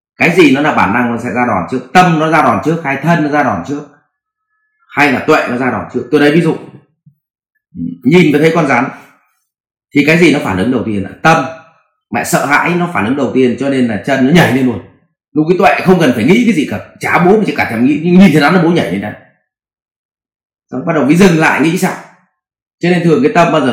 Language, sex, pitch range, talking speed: English, male, 125-170 Hz, 265 wpm